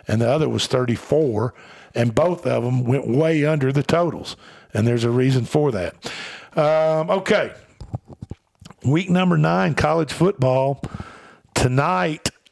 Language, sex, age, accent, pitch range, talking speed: English, male, 50-69, American, 125-155 Hz, 135 wpm